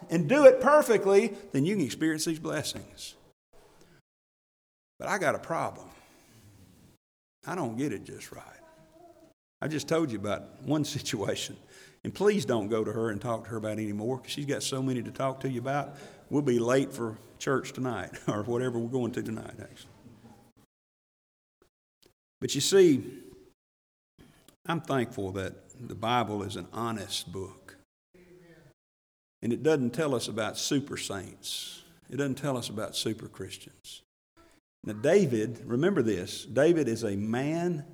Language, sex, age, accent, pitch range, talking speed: English, male, 50-69, American, 105-150 Hz, 155 wpm